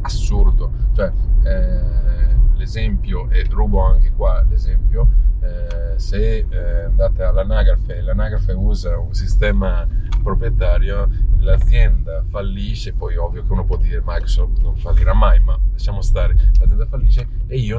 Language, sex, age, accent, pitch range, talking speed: Italian, male, 30-49, native, 90-105 Hz, 130 wpm